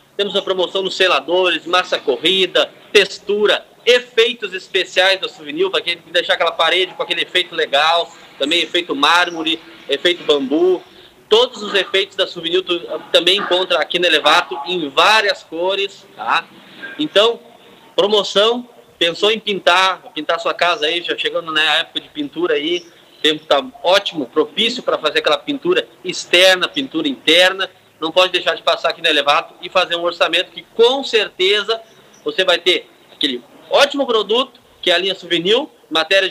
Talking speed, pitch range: 160 wpm, 175-240 Hz